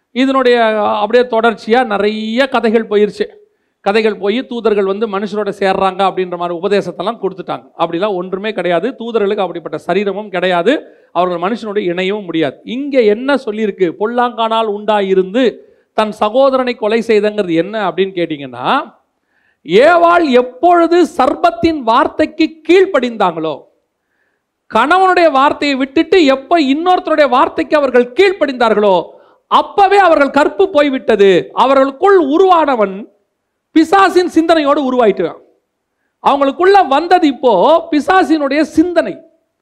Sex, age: male, 40-59